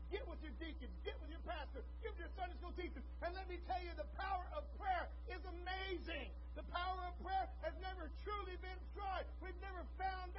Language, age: English, 50-69